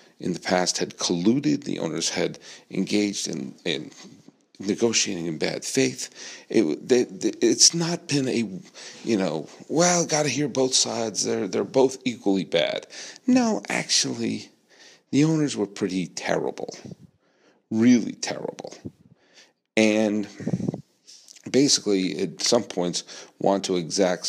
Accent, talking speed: American, 130 wpm